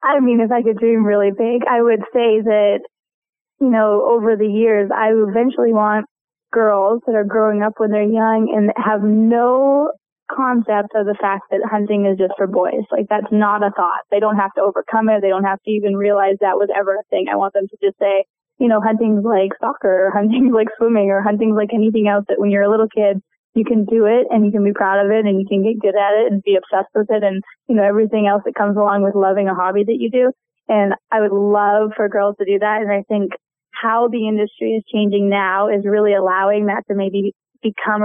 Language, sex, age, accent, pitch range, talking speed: English, female, 20-39, American, 200-225 Hz, 240 wpm